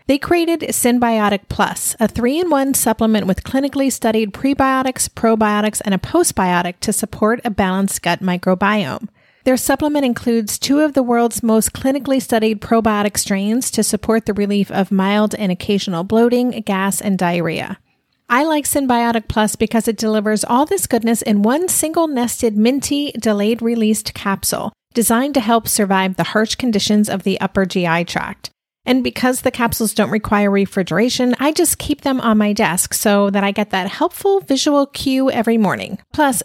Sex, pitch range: female, 200-260 Hz